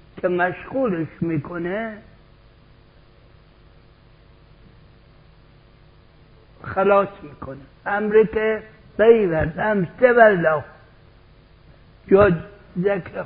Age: 60-79